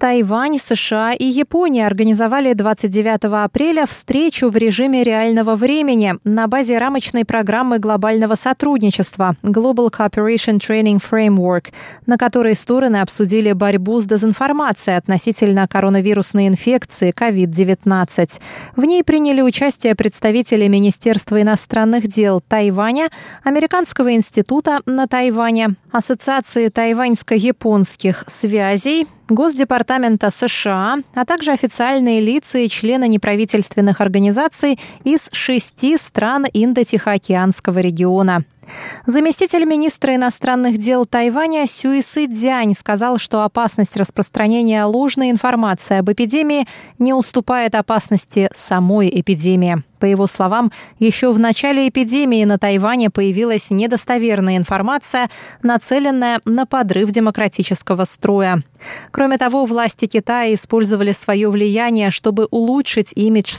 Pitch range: 200-250 Hz